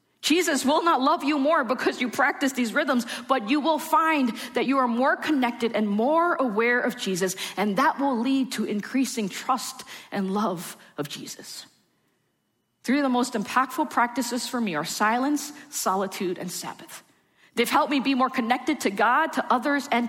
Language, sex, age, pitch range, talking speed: English, female, 40-59, 210-290 Hz, 180 wpm